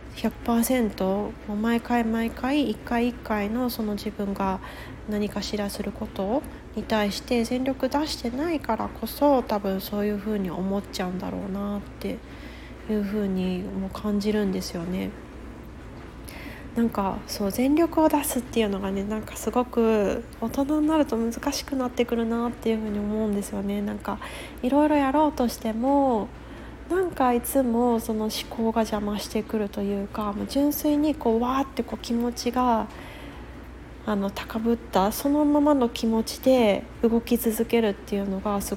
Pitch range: 205-240 Hz